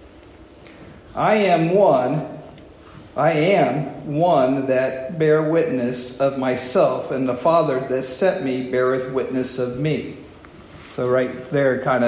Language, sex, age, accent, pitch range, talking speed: English, male, 50-69, American, 125-155 Hz, 125 wpm